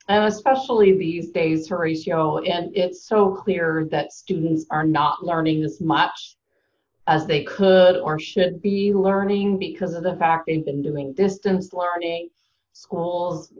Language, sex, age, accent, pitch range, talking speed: English, female, 40-59, American, 160-200 Hz, 145 wpm